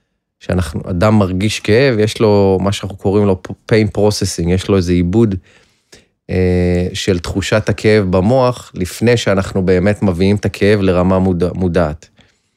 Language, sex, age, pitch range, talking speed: Hebrew, male, 30-49, 90-110 Hz, 145 wpm